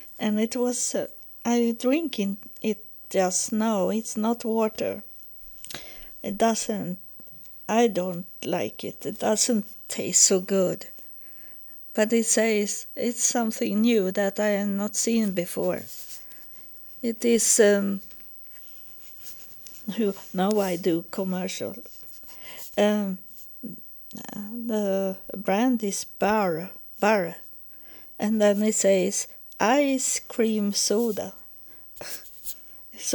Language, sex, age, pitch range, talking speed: English, female, 50-69, 200-230 Hz, 105 wpm